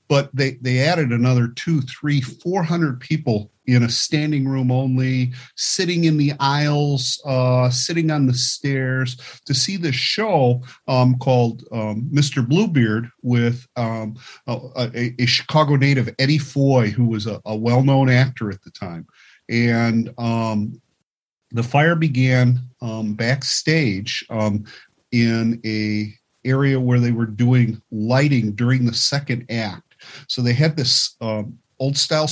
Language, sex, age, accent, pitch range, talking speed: English, male, 40-59, American, 120-140 Hz, 145 wpm